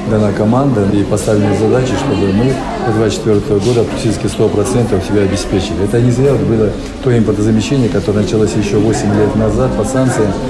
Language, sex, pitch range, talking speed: Russian, male, 105-125 Hz, 160 wpm